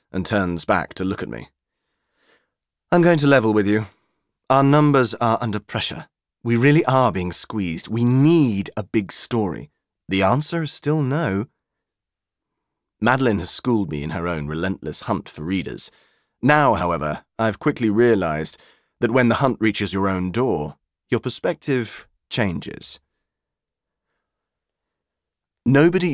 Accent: British